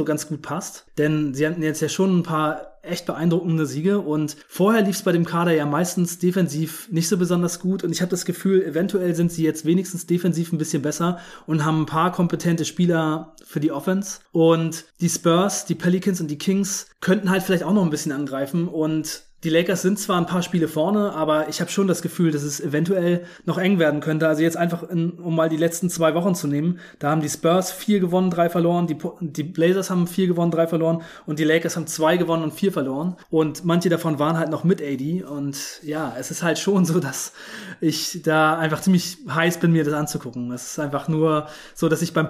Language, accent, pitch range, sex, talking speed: German, German, 155-180 Hz, male, 225 wpm